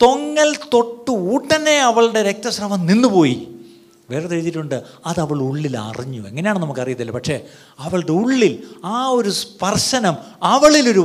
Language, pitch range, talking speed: Malayalam, 130-215 Hz, 115 wpm